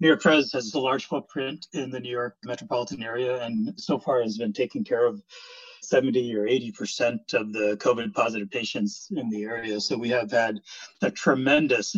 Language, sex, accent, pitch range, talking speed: English, male, American, 105-130 Hz, 190 wpm